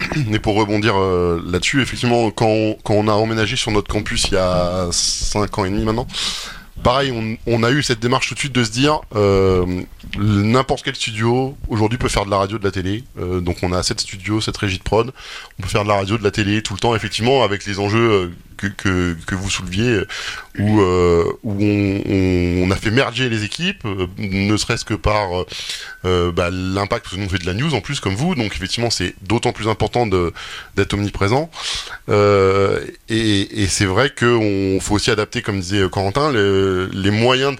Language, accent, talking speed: French, French, 215 wpm